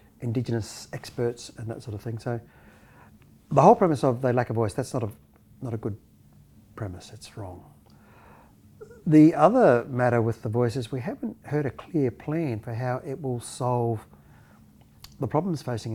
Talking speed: 170 wpm